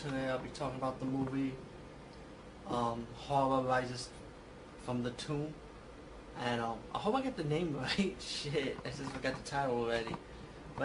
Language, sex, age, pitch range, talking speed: English, male, 20-39, 125-140 Hz, 165 wpm